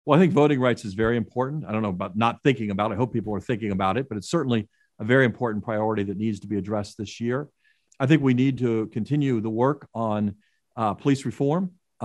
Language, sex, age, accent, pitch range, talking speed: English, male, 50-69, American, 110-140 Hz, 245 wpm